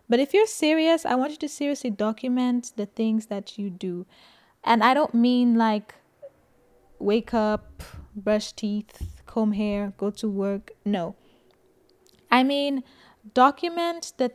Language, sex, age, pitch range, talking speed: English, female, 10-29, 205-240 Hz, 140 wpm